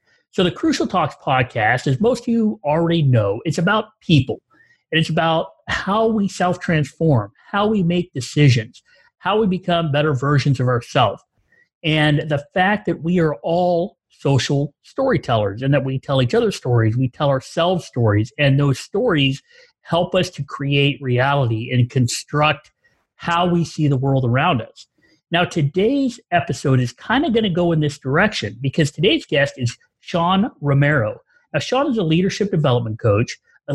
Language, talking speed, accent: English, 165 wpm, American